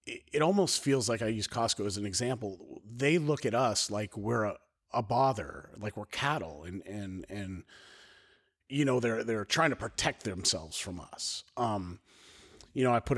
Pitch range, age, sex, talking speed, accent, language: 100-120 Hz, 30-49, male, 180 wpm, American, English